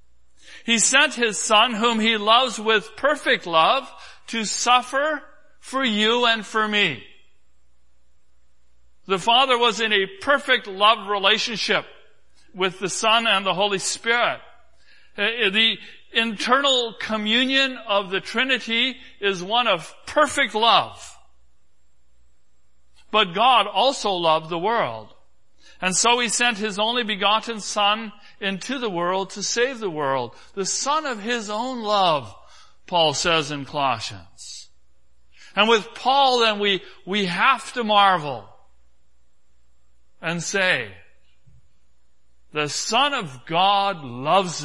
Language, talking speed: English, 120 wpm